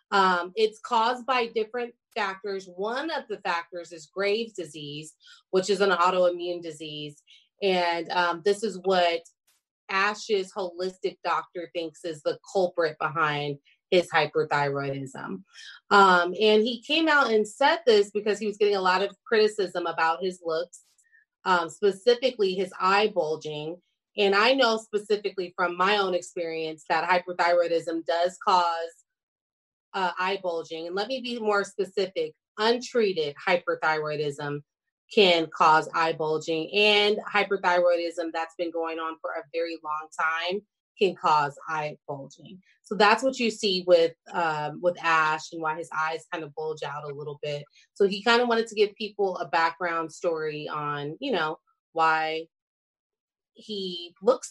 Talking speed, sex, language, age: 150 wpm, female, English, 30-49